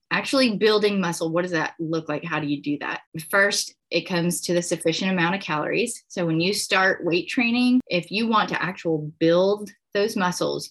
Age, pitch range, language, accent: 30-49, 160-205 Hz, English, American